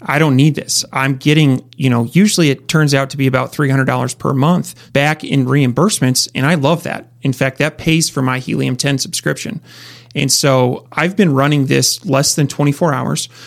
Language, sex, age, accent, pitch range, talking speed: English, male, 30-49, American, 130-150 Hz, 195 wpm